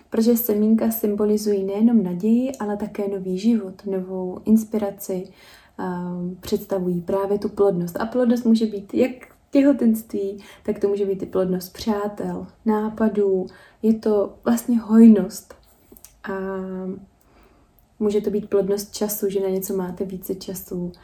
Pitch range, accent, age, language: 190-220 Hz, native, 20-39, Czech